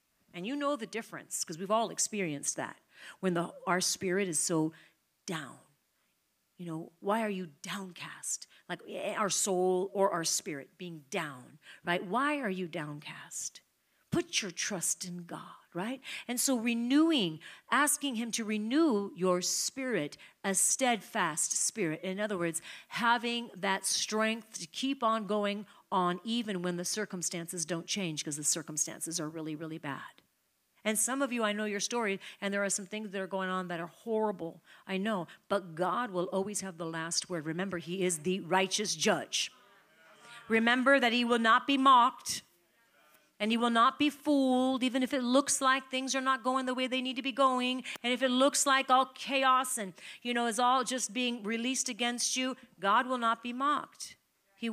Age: 40-59